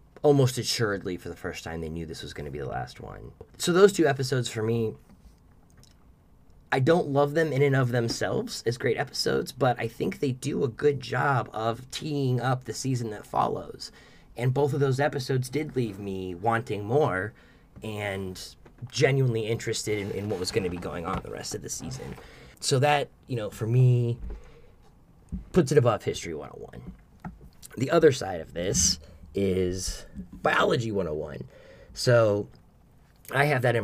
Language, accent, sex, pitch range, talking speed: English, American, male, 95-130 Hz, 170 wpm